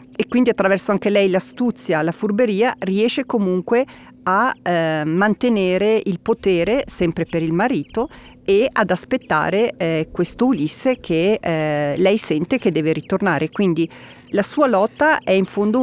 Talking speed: 150 wpm